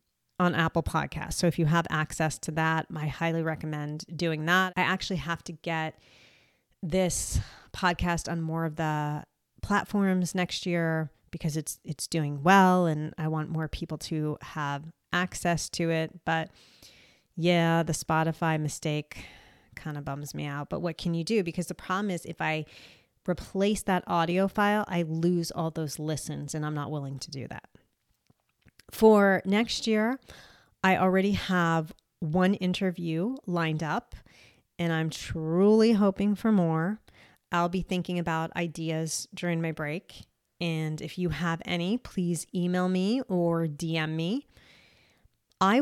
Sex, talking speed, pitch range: female, 155 wpm, 155-185 Hz